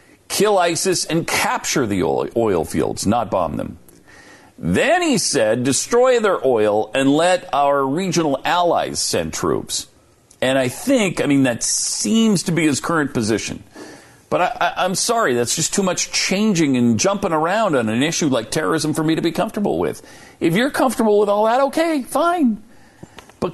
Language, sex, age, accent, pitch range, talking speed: English, male, 50-69, American, 125-195 Hz, 170 wpm